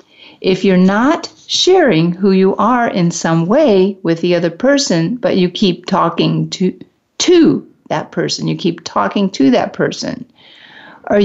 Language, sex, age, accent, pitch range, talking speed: English, female, 50-69, American, 175-235 Hz, 155 wpm